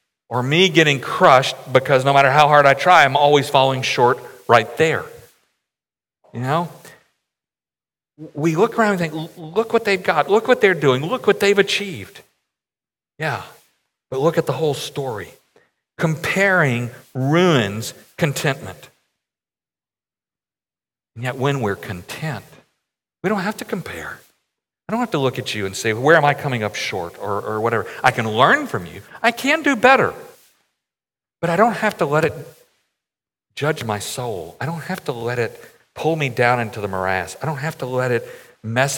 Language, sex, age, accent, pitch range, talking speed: English, male, 50-69, American, 120-160 Hz, 170 wpm